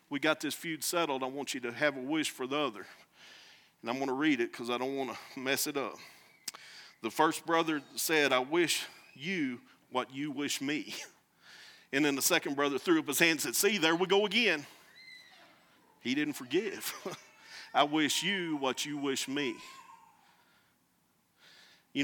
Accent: American